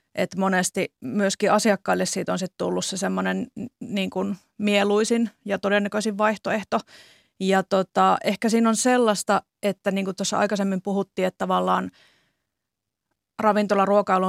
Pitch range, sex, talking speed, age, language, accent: 185-210 Hz, female, 120 wpm, 30-49, Finnish, native